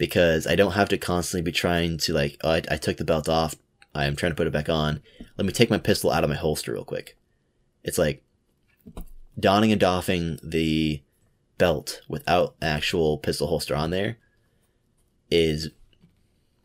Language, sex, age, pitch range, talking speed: English, male, 20-39, 75-90 Hz, 175 wpm